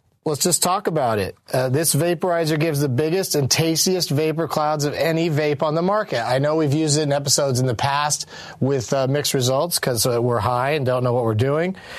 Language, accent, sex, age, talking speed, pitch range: English, American, male, 40-59, 225 wpm, 120-155 Hz